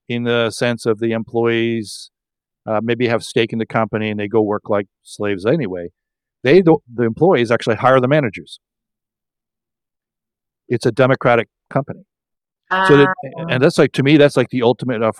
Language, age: English, 50-69